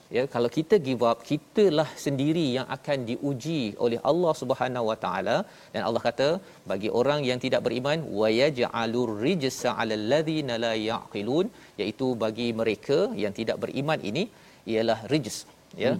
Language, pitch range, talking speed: Malayalam, 115-145 Hz, 145 wpm